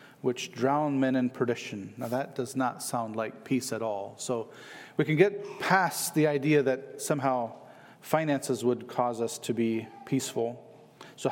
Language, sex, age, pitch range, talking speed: English, male, 40-59, 125-170 Hz, 165 wpm